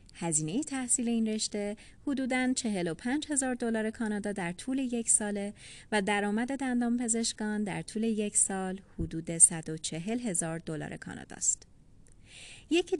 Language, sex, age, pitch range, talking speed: Persian, female, 30-49, 180-230 Hz, 130 wpm